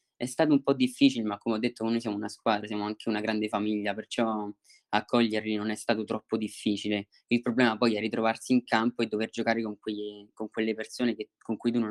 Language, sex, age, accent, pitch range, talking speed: Italian, male, 20-39, native, 105-120 Hz, 225 wpm